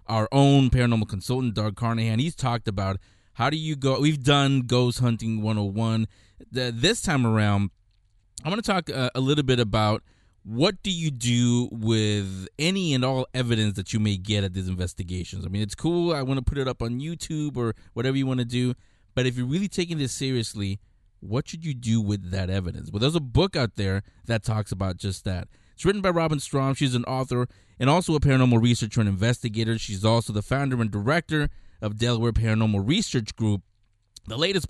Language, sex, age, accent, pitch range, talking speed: English, male, 20-39, American, 100-135 Hz, 200 wpm